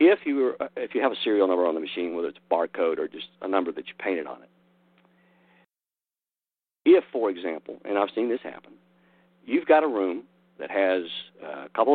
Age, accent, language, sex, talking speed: 50-69, American, English, male, 205 wpm